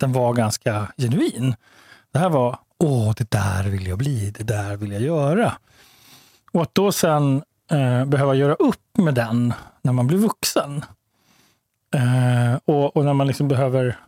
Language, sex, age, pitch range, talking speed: Swedish, male, 30-49, 125-155 Hz, 165 wpm